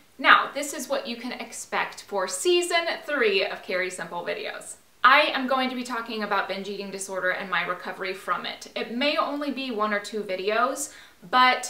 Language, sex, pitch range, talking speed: English, female, 200-260 Hz, 195 wpm